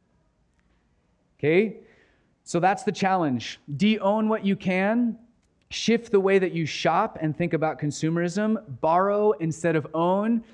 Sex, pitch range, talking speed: male, 155-195 Hz, 130 wpm